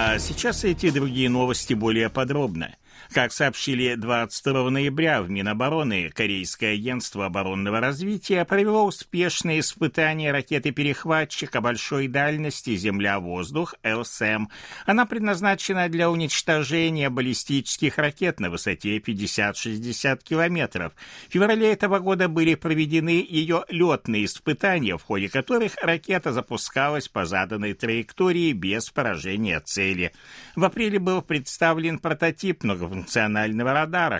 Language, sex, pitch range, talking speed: Russian, male, 110-170 Hz, 110 wpm